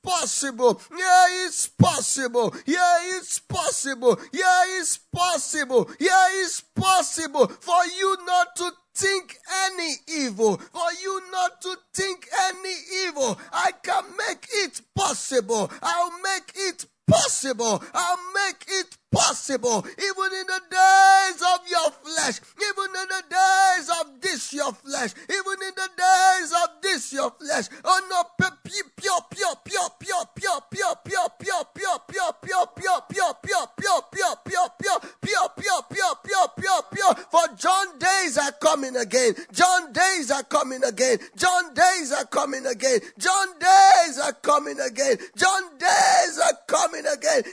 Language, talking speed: English, 115 wpm